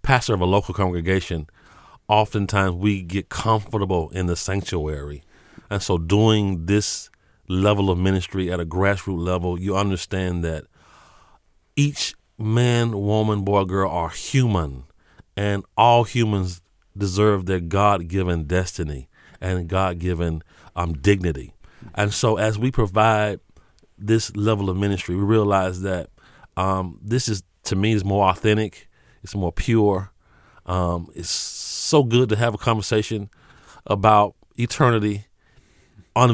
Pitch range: 95-115 Hz